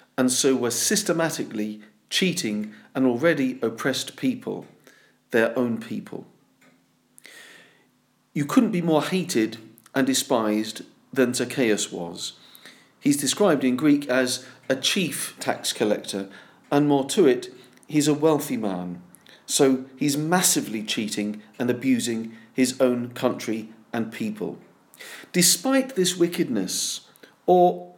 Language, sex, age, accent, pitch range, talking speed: English, male, 40-59, British, 125-180 Hz, 115 wpm